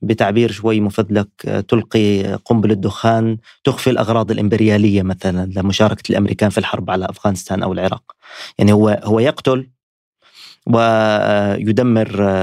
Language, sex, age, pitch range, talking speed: Arabic, male, 30-49, 105-120 Hz, 110 wpm